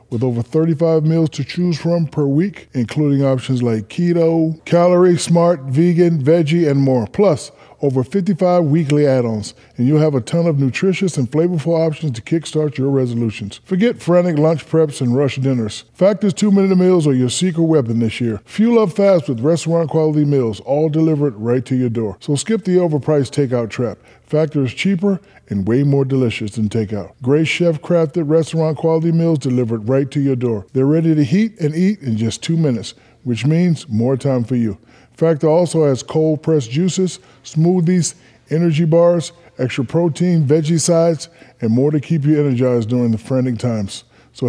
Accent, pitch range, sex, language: American, 130-165 Hz, male, English